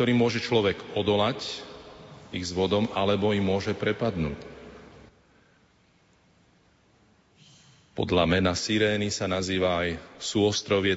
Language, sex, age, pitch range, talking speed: Slovak, male, 40-59, 95-110 Hz, 100 wpm